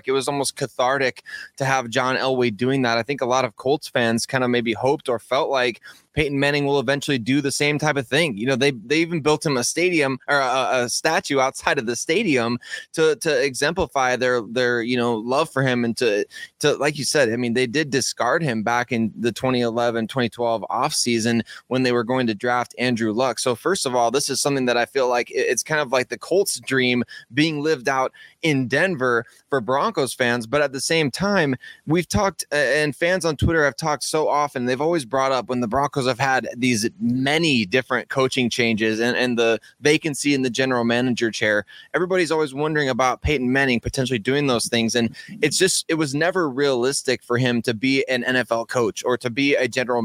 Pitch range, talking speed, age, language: 120-145 Hz, 215 wpm, 20-39, English